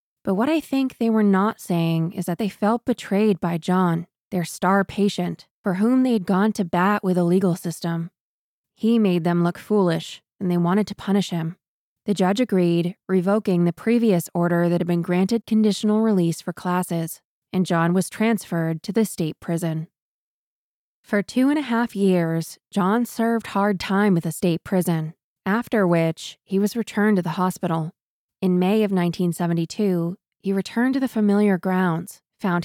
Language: English